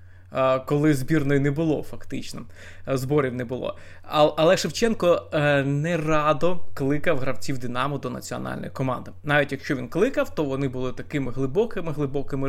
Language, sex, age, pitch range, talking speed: Ukrainian, male, 20-39, 125-155 Hz, 130 wpm